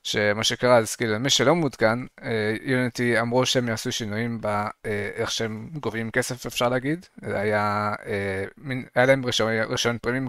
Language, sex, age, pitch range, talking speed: Hebrew, male, 20-39, 110-125 Hz, 155 wpm